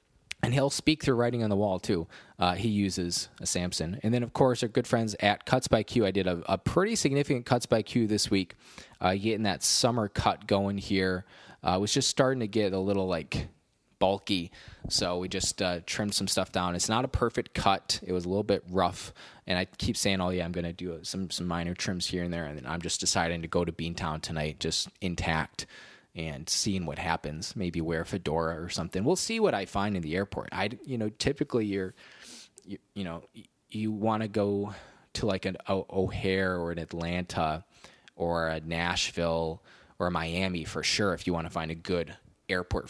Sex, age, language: male, 20-39, English